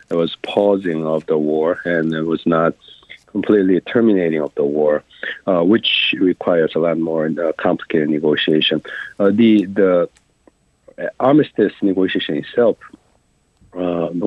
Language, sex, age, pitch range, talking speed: English, male, 50-69, 80-95 Hz, 125 wpm